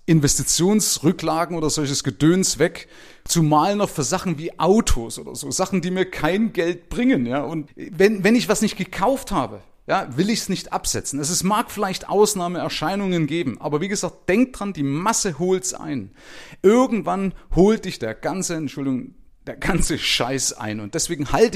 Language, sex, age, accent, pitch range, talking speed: German, male, 30-49, German, 140-195 Hz, 170 wpm